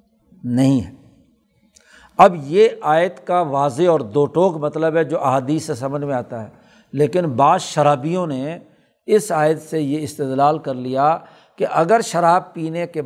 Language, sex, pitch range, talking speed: Urdu, male, 140-180 Hz, 160 wpm